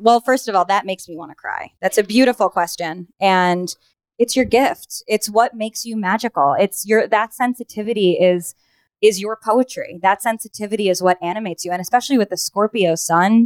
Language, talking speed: English, 190 wpm